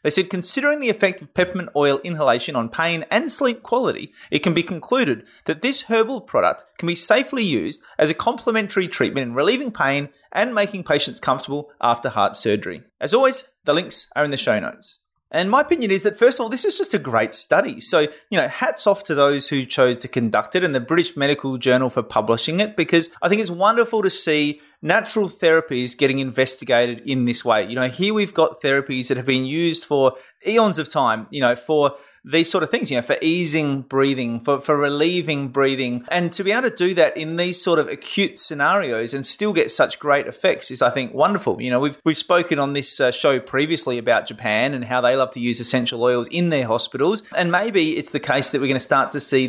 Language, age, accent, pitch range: English, 30-49, Australian, 130-195 Hz